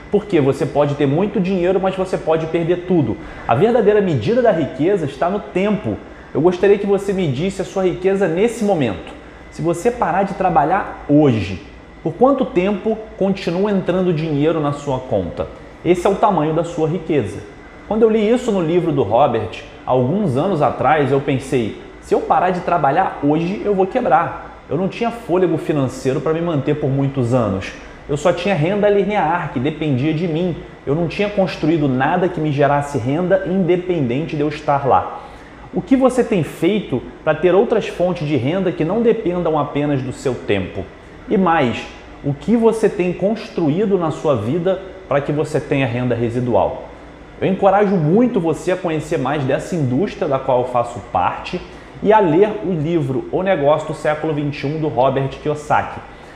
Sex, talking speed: male, 180 wpm